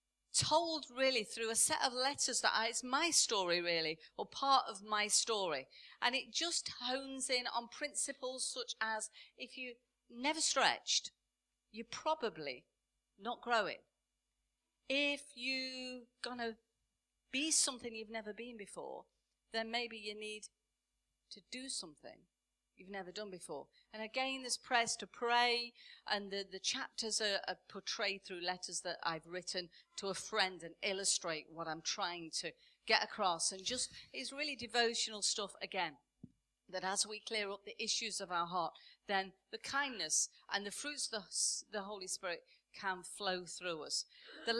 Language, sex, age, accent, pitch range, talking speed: English, female, 40-59, British, 190-250 Hz, 160 wpm